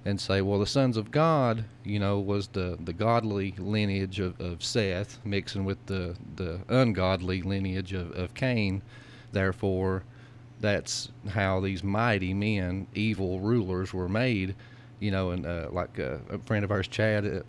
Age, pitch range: 40-59, 95-120 Hz